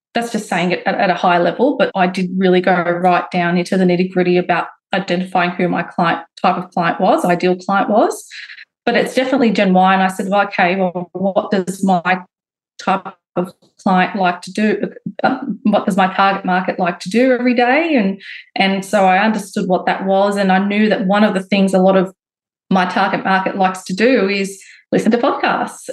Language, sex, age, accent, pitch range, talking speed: English, female, 20-39, Australian, 185-210 Hz, 205 wpm